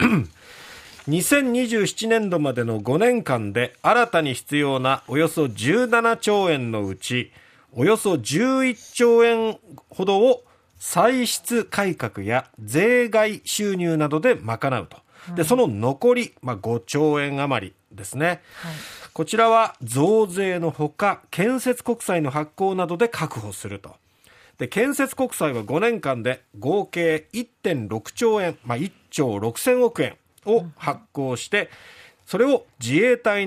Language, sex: Japanese, male